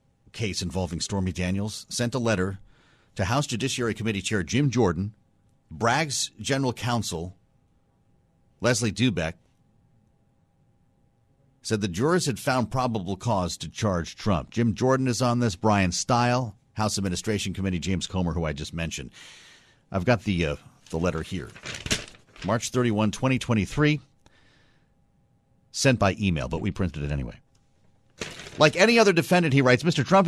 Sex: male